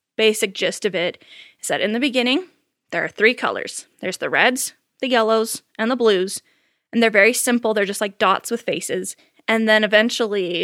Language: English